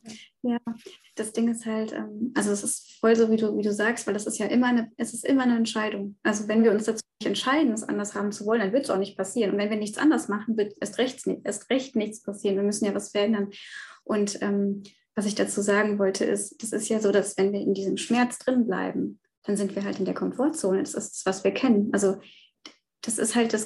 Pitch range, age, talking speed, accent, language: 205-235 Hz, 20-39, 255 wpm, German, German